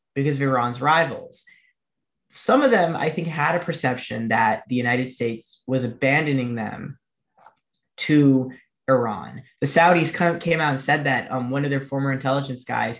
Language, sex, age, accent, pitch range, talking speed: English, male, 20-39, American, 130-170 Hz, 160 wpm